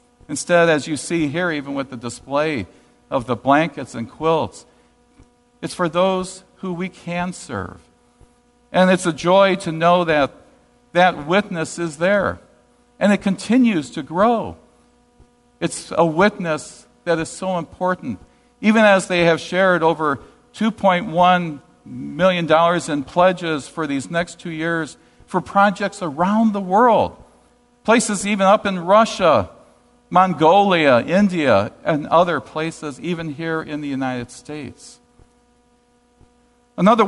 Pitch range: 150-205 Hz